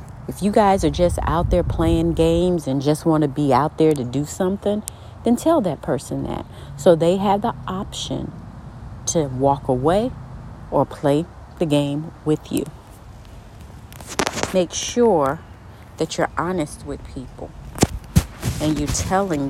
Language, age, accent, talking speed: English, 40-59, American, 150 wpm